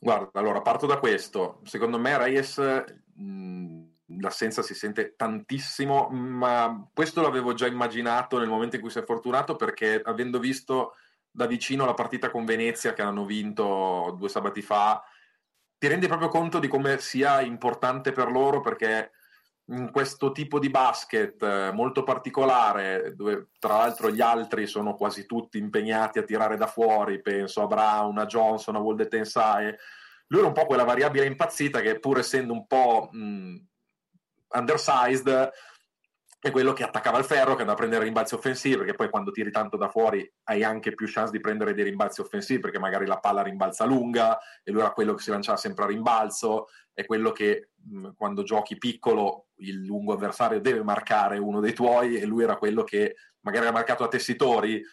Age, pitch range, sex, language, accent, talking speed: 30-49, 110-140 Hz, male, Italian, native, 175 wpm